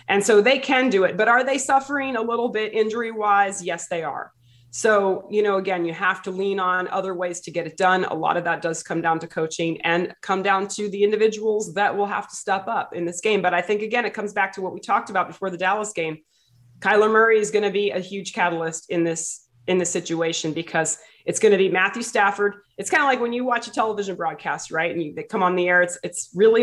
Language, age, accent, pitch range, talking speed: English, 30-49, American, 170-215 Hz, 260 wpm